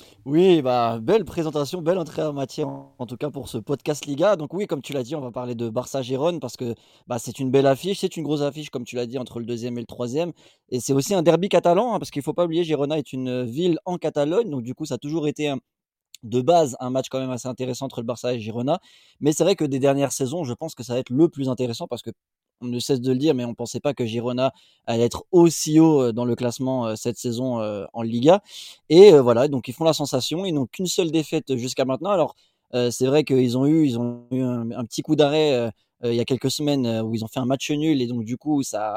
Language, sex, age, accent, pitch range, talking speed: French, male, 20-39, French, 120-155 Hz, 270 wpm